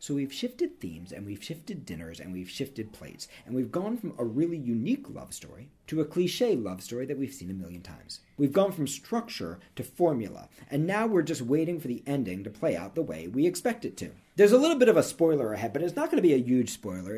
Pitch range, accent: 110-175 Hz, American